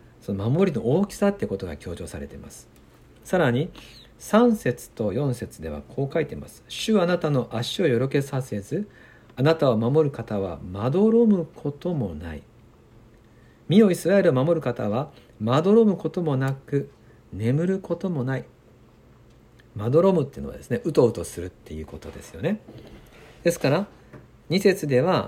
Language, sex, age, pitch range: Japanese, male, 60-79, 110-160 Hz